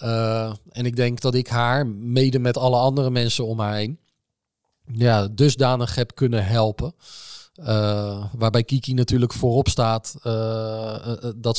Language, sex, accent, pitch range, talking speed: Dutch, male, Dutch, 110-130 Hz, 150 wpm